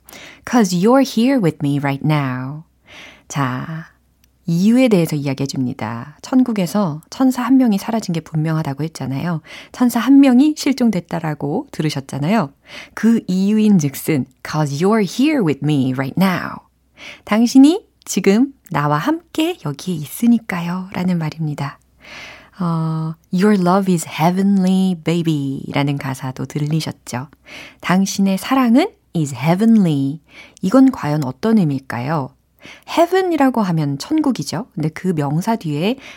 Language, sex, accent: Korean, female, native